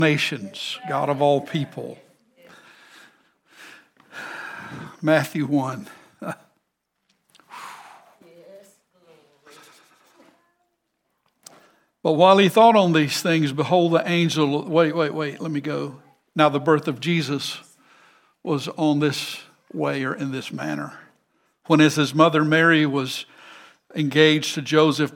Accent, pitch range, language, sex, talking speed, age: American, 145-165 Hz, English, male, 105 wpm, 60-79